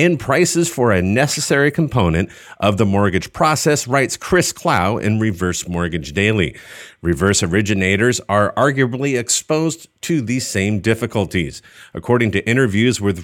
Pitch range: 95-125 Hz